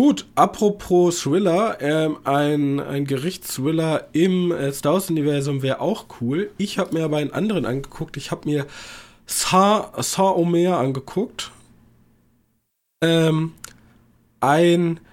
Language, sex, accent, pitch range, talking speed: German, male, German, 145-190 Hz, 115 wpm